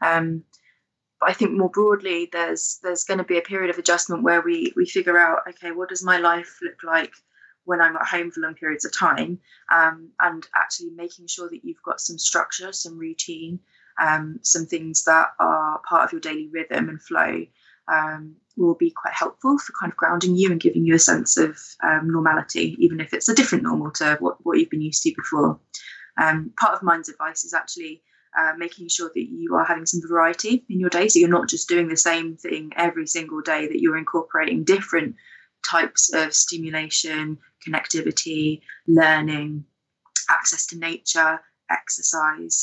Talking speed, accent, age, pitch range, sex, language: 190 wpm, British, 20-39, 160-185 Hz, female, English